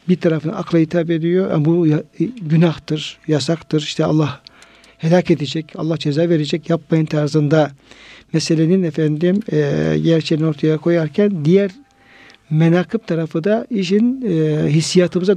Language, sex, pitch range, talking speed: Turkish, male, 160-205 Hz, 110 wpm